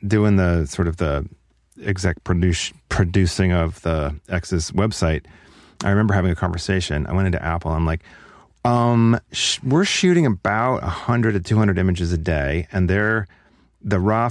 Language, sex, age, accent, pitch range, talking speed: English, male, 40-59, American, 80-100 Hz, 160 wpm